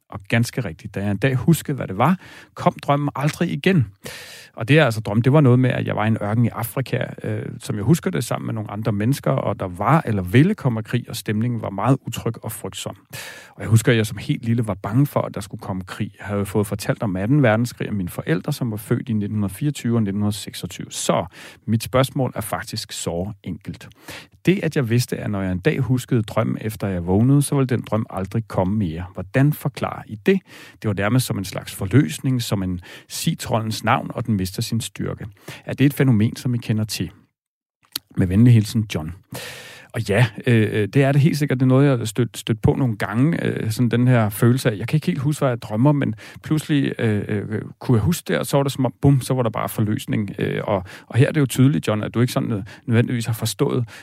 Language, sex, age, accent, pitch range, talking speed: Danish, male, 40-59, native, 105-135 Hz, 240 wpm